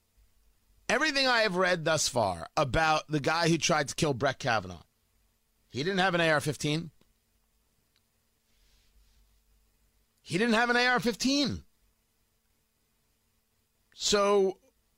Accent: American